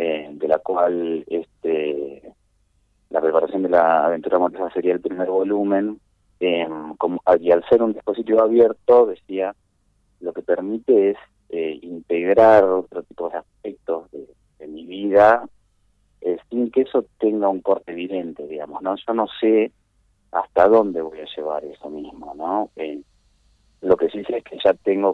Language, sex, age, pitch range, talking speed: Spanish, male, 30-49, 85-105 Hz, 160 wpm